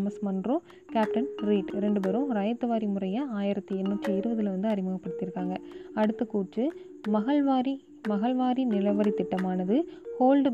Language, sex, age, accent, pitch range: Tamil, female, 20-39, native, 195-245 Hz